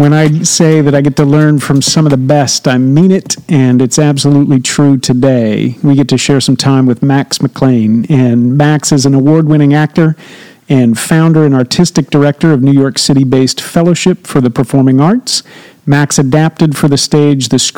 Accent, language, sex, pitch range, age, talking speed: American, English, male, 135-160 Hz, 50-69, 190 wpm